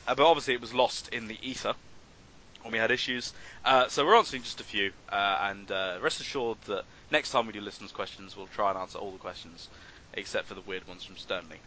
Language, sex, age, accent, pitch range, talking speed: English, male, 20-39, British, 100-145 Hz, 235 wpm